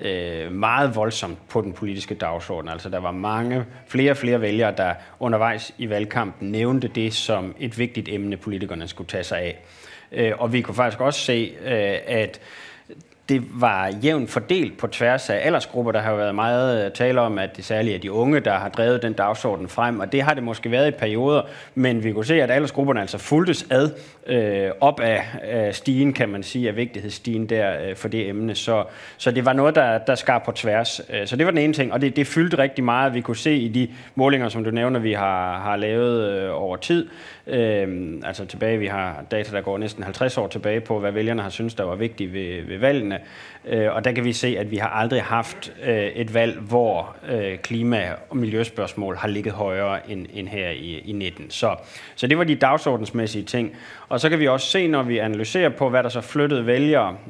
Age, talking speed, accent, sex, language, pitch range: 30-49, 210 wpm, native, male, Danish, 105-125 Hz